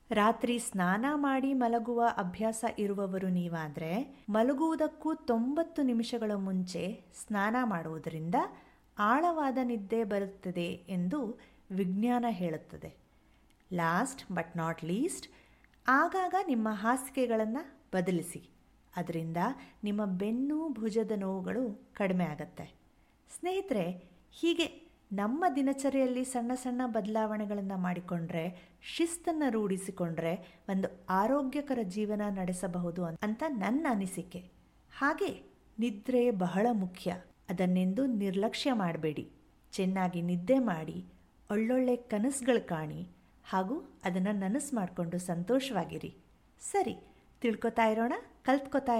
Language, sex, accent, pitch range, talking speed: Kannada, female, native, 180-255 Hz, 90 wpm